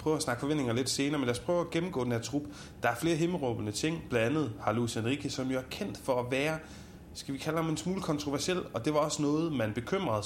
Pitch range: 115-150 Hz